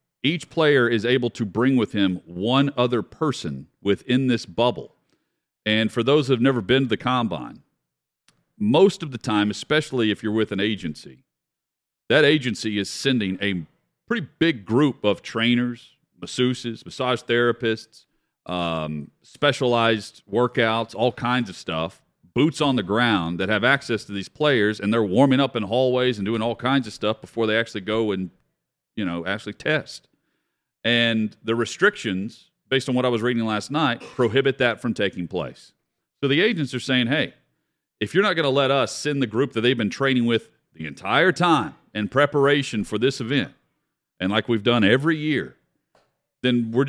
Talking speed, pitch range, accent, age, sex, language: 175 wpm, 105-130 Hz, American, 40-59, male, English